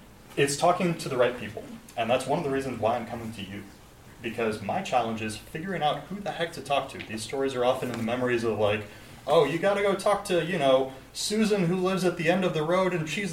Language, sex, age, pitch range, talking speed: English, male, 30-49, 110-165 Hz, 255 wpm